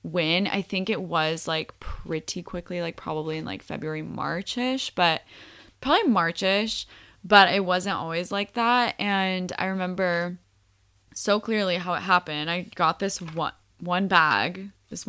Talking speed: 150 wpm